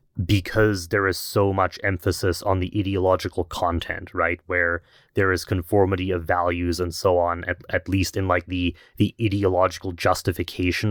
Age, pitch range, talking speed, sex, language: 20-39, 90-100 Hz, 160 wpm, male, English